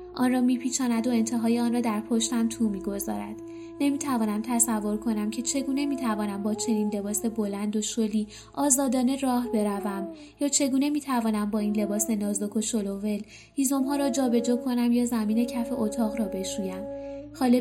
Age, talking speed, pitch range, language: 10-29, 160 wpm, 215-260 Hz, Persian